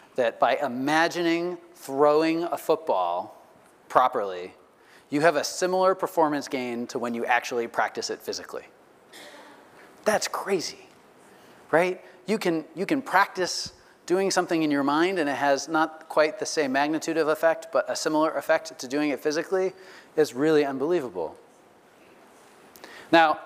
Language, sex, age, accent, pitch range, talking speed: English, male, 30-49, American, 140-170 Hz, 140 wpm